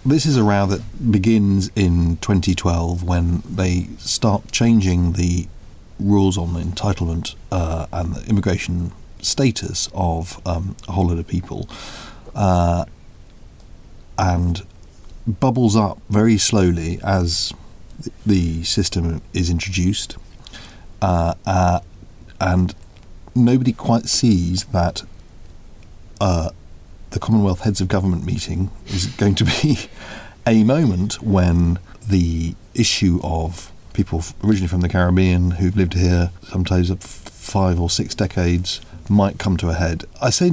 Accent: British